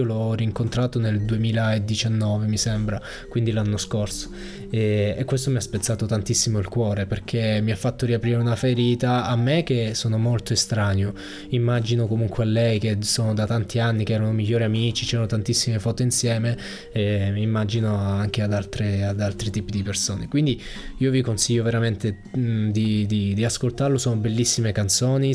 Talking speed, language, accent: 165 wpm, Italian, native